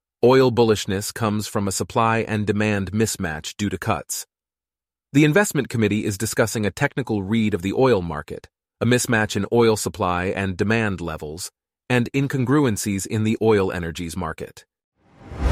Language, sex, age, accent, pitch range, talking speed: English, male, 30-49, American, 95-120 Hz, 150 wpm